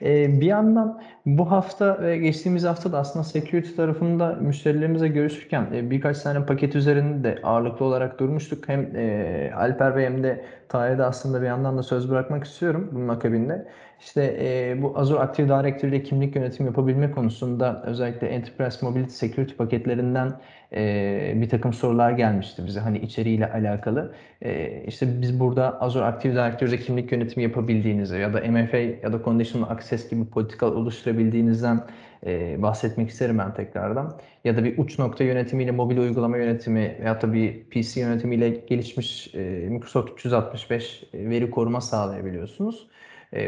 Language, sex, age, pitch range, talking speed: Turkish, male, 30-49, 115-145 Hz, 145 wpm